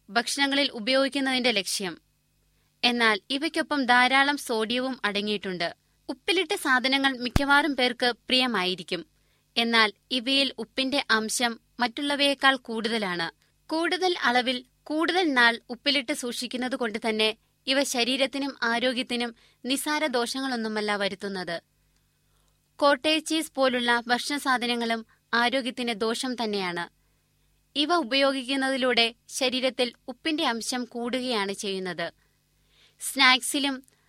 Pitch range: 225-275 Hz